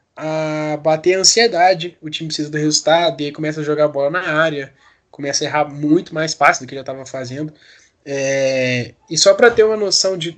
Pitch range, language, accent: 160-215 Hz, Portuguese, Brazilian